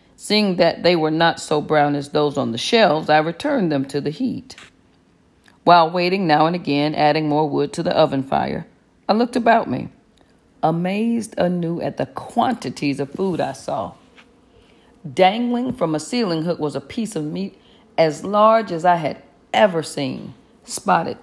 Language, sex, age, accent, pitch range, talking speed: English, female, 40-59, American, 150-205 Hz, 170 wpm